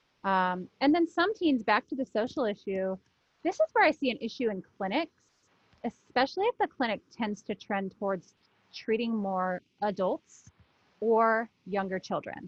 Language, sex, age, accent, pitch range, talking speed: English, female, 30-49, American, 195-255 Hz, 160 wpm